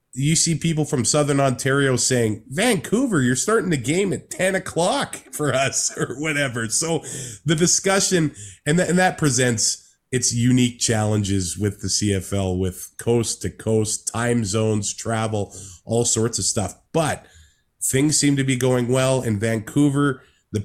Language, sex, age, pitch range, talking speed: English, male, 30-49, 110-140 Hz, 150 wpm